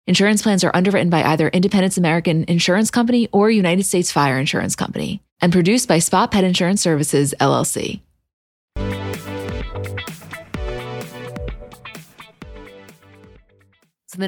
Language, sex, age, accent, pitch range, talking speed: English, female, 20-39, American, 145-180 Hz, 110 wpm